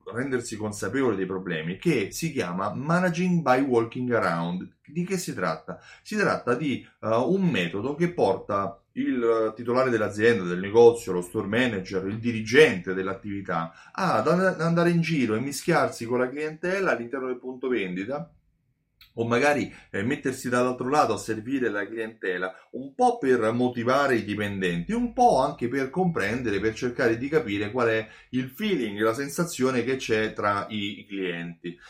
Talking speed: 155 wpm